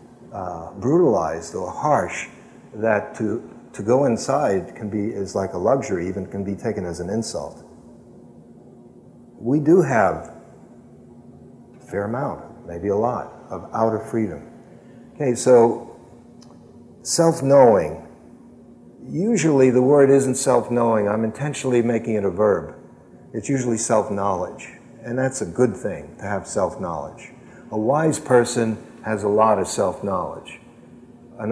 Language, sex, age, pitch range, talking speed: English, male, 50-69, 110-130 Hz, 130 wpm